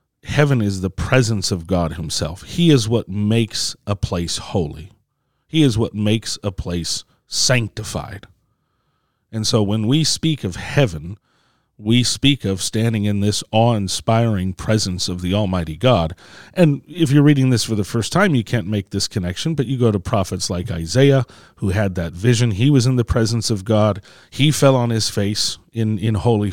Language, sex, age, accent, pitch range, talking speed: English, male, 40-59, American, 95-120 Hz, 180 wpm